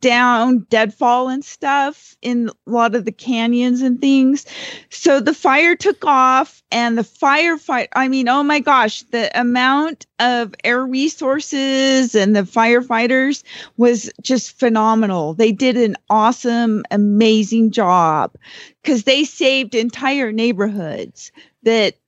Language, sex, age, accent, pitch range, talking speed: English, female, 40-59, American, 215-260 Hz, 130 wpm